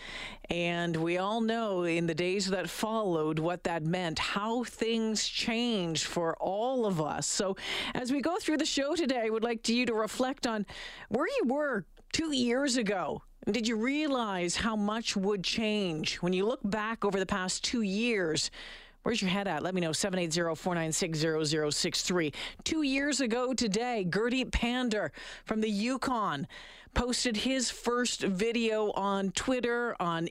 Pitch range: 195-240 Hz